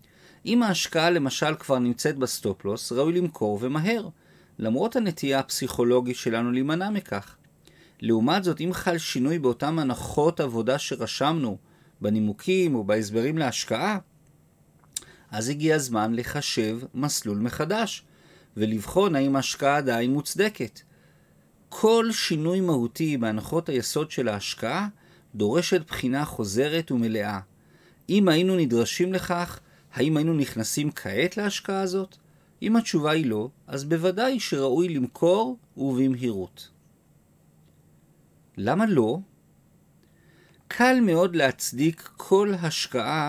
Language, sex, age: Hebrew, male, 40-59